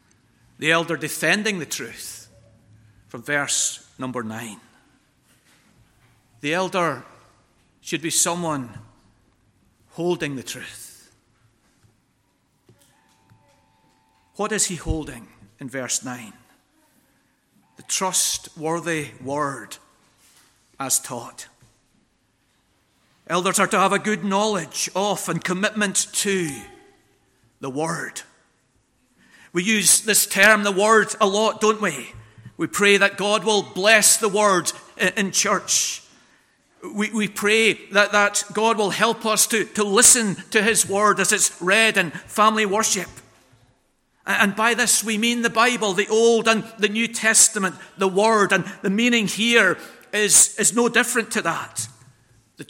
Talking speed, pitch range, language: 125 wpm, 145-215 Hz, English